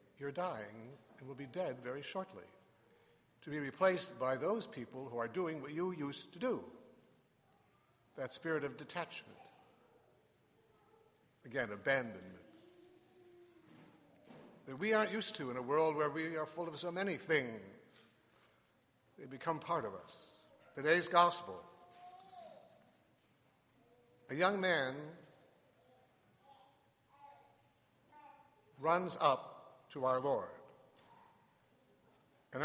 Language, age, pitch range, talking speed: English, 60-79, 145-220 Hz, 110 wpm